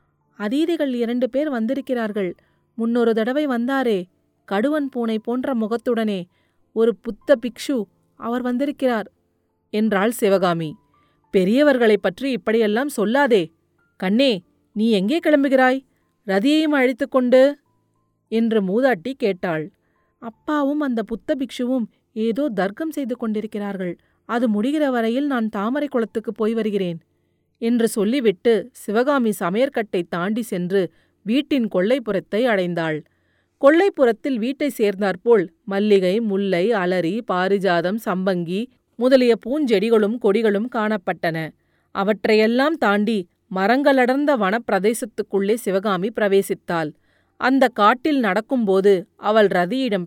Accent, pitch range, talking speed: native, 200-255 Hz, 95 wpm